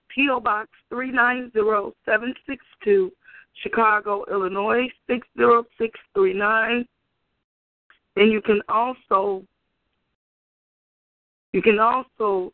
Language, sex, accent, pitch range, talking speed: English, female, American, 200-250 Hz, 100 wpm